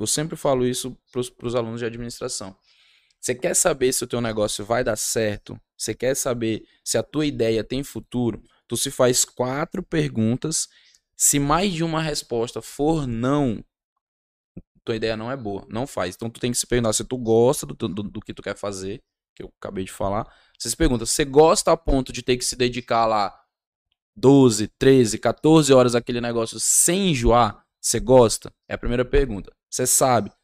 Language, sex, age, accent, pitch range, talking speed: Portuguese, male, 10-29, Brazilian, 110-130 Hz, 190 wpm